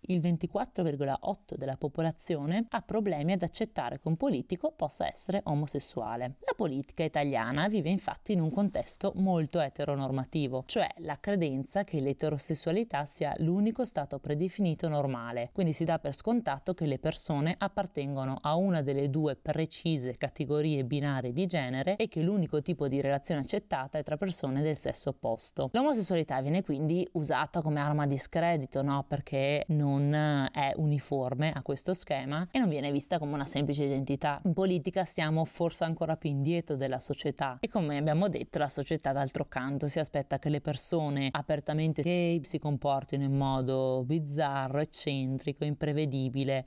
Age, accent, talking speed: 30-49, native, 155 wpm